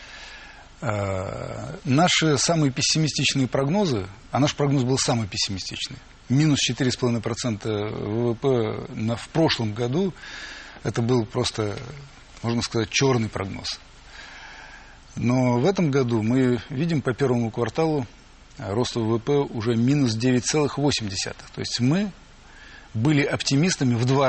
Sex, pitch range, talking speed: male, 115-140 Hz, 110 wpm